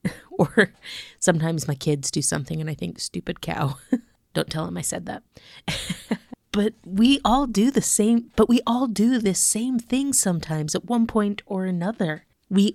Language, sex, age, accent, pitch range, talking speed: English, female, 30-49, American, 160-215 Hz, 175 wpm